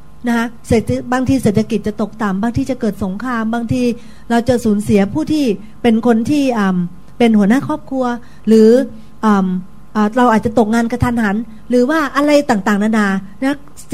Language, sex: Thai, female